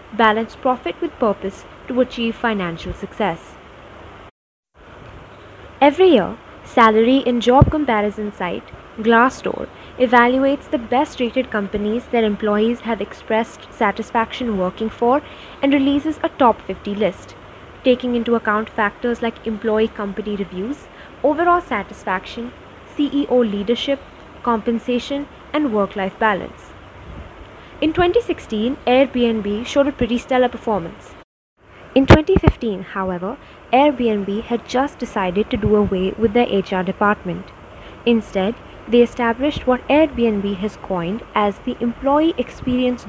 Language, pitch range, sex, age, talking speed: English, 210-255 Hz, female, 20-39, 115 wpm